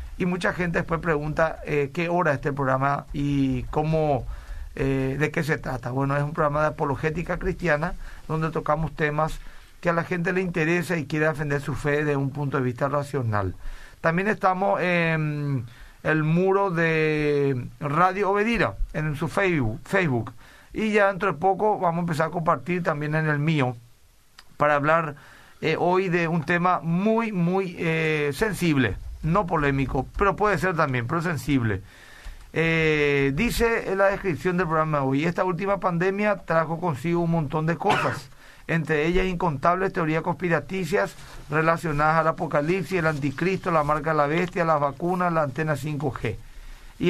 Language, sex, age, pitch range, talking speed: Spanish, male, 40-59, 145-180 Hz, 160 wpm